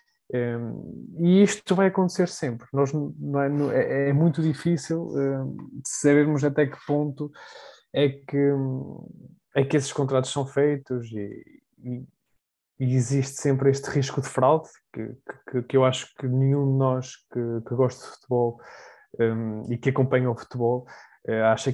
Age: 20-39